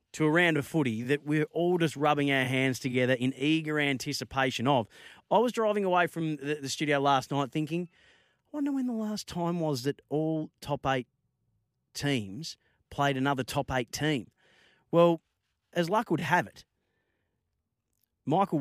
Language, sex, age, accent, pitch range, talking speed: English, male, 30-49, Australian, 125-155 Hz, 165 wpm